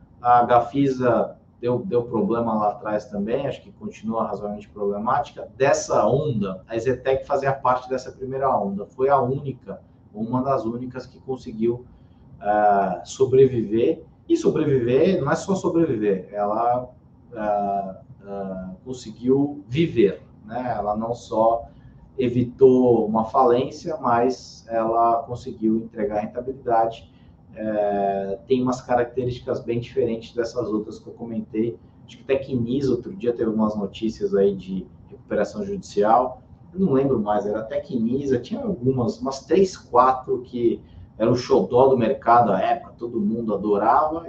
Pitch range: 105-135 Hz